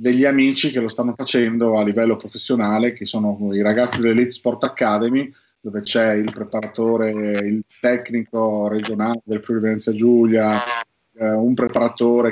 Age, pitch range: 30-49, 110-125 Hz